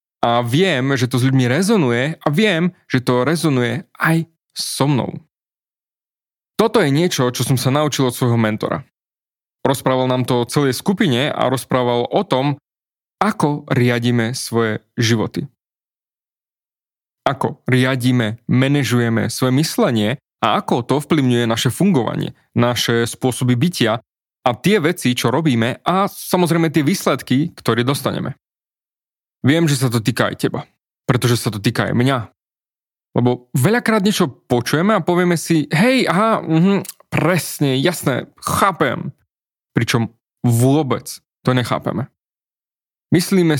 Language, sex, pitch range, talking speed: Slovak, male, 125-170 Hz, 130 wpm